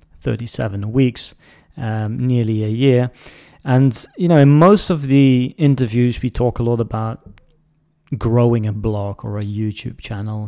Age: 30-49